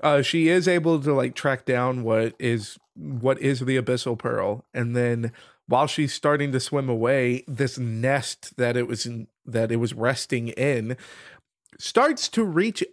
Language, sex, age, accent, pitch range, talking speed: English, male, 30-49, American, 125-155 Hz, 170 wpm